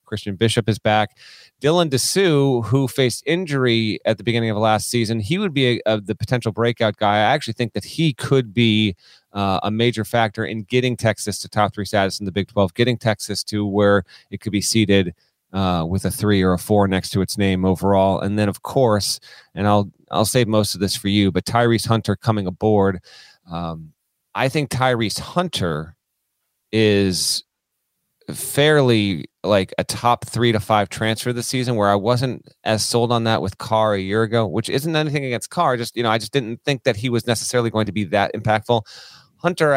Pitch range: 100-120 Hz